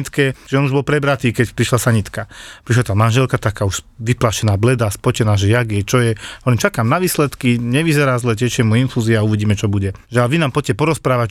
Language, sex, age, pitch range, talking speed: Czech, male, 40-59, 115-150 Hz, 210 wpm